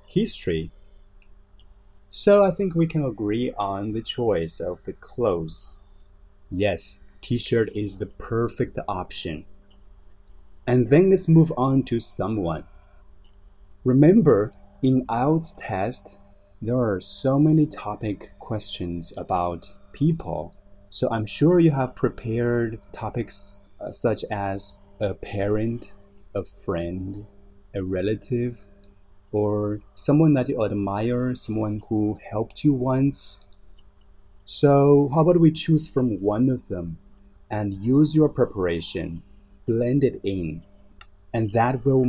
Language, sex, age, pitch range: Chinese, male, 30-49, 100-130 Hz